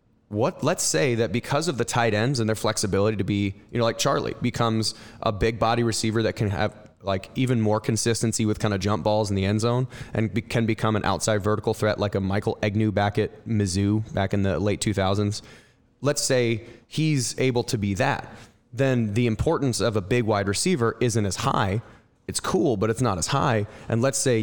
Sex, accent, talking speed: male, American, 215 wpm